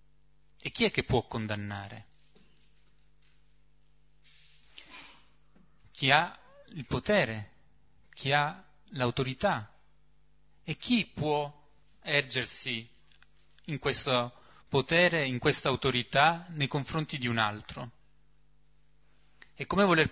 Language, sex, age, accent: Italian, male, 30-49, native